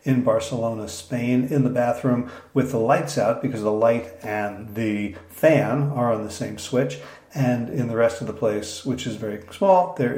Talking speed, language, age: 195 wpm, English, 40-59